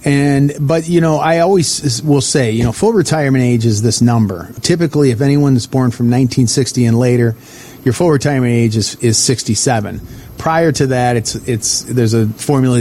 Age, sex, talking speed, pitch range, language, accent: 40-59, male, 185 wpm, 115-140 Hz, English, American